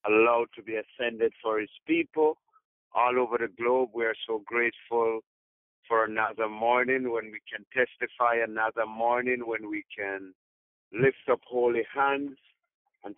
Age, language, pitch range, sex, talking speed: 50-69, English, 105-125 Hz, male, 145 wpm